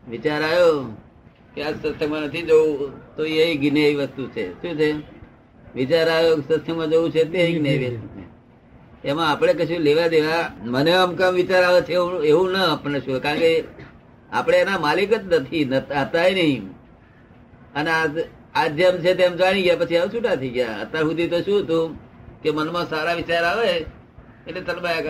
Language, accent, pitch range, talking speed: Gujarati, native, 140-170 Hz, 140 wpm